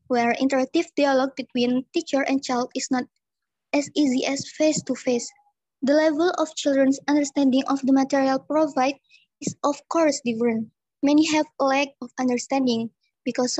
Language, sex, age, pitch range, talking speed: English, male, 20-39, 255-290 Hz, 145 wpm